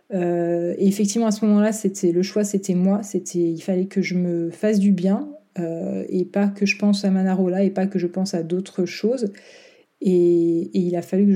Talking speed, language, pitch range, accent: 220 wpm, French, 185-210 Hz, French